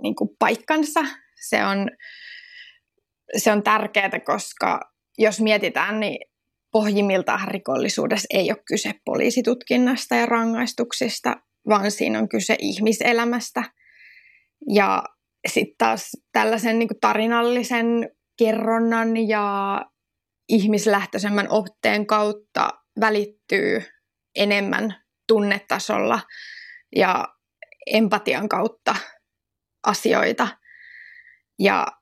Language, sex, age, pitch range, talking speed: Finnish, female, 20-39, 205-245 Hz, 70 wpm